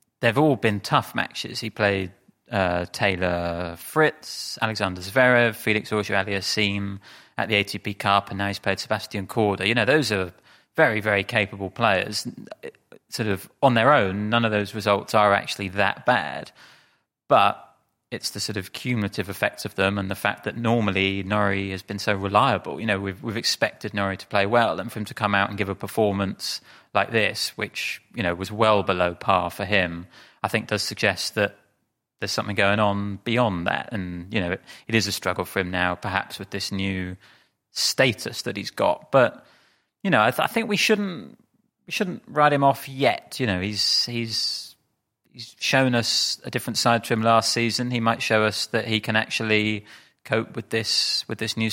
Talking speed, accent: 195 wpm, British